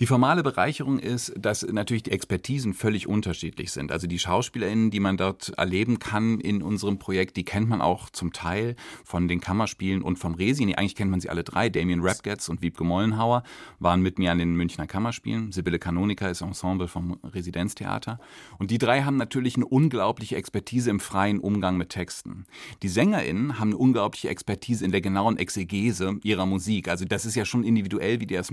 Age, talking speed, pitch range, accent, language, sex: 40-59, 195 wpm, 95-120 Hz, German, German, male